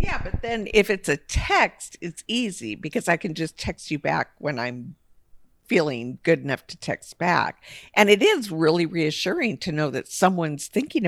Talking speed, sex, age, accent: 185 wpm, female, 50-69, American